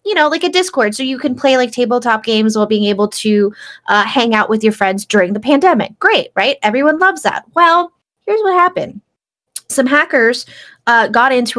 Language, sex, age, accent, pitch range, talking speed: English, female, 20-39, American, 210-275 Hz, 200 wpm